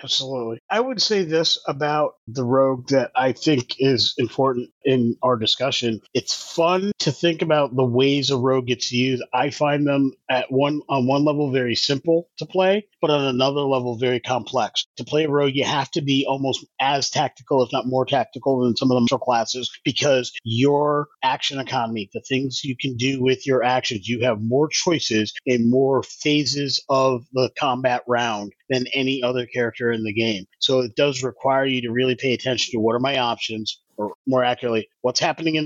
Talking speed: 195 wpm